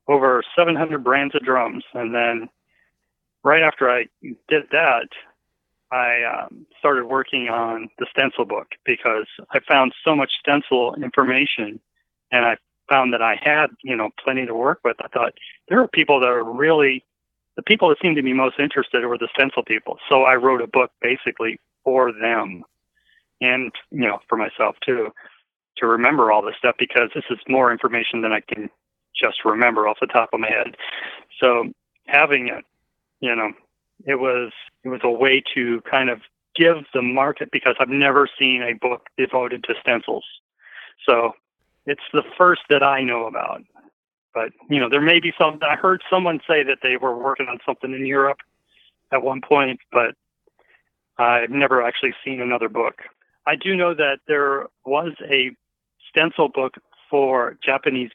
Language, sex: English, male